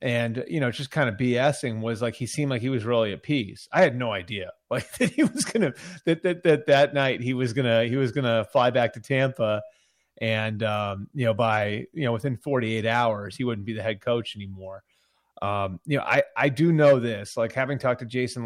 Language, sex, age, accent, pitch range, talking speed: English, male, 30-49, American, 115-145 Hz, 240 wpm